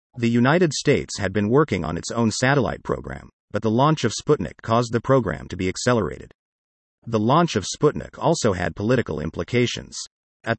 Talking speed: 175 wpm